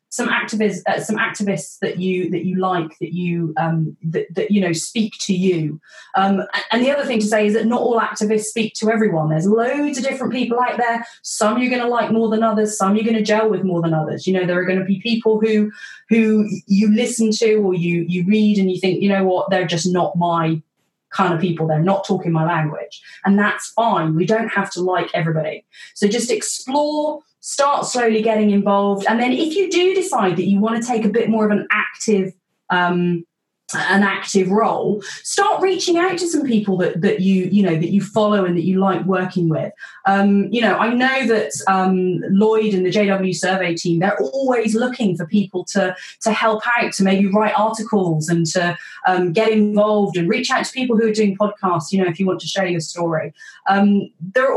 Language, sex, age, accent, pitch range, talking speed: English, female, 30-49, British, 180-225 Hz, 220 wpm